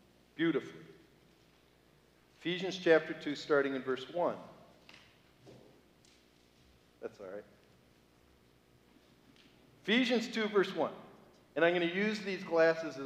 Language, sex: English, male